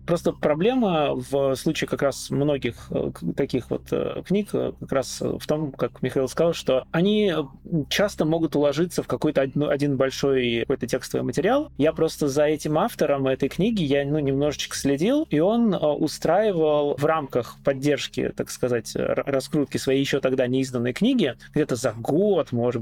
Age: 20-39